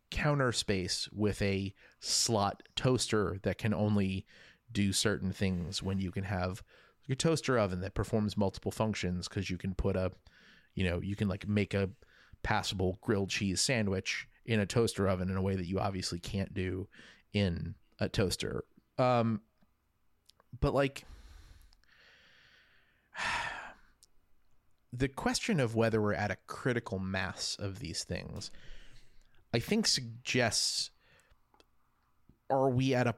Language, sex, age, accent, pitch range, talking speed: English, male, 30-49, American, 95-115 Hz, 135 wpm